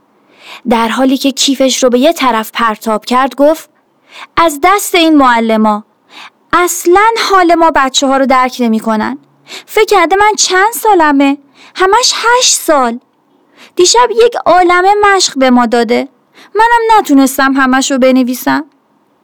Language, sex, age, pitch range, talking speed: Persian, female, 30-49, 220-315 Hz, 140 wpm